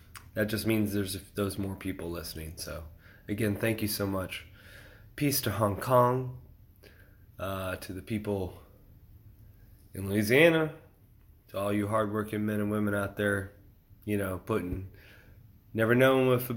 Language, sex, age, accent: English, male, 20-39, American